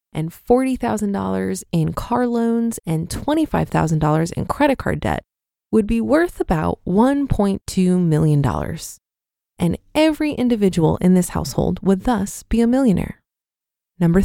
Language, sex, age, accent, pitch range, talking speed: English, female, 20-39, American, 180-240 Hz, 120 wpm